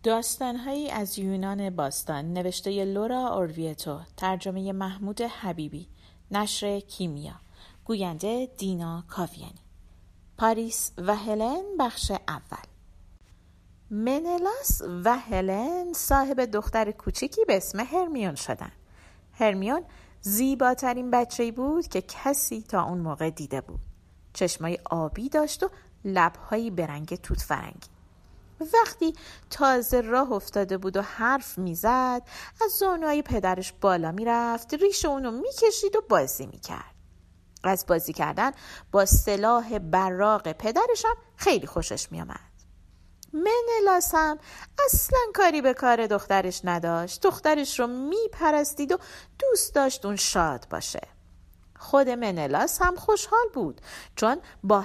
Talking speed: 120 wpm